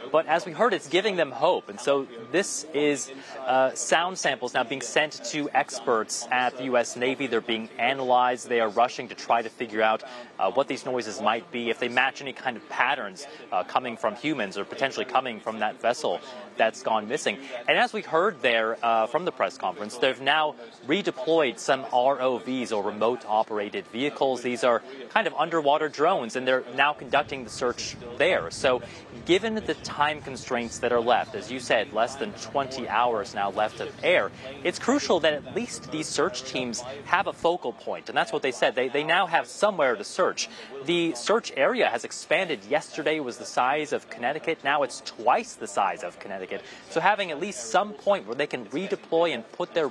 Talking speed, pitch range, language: 200 wpm, 120-150 Hz, English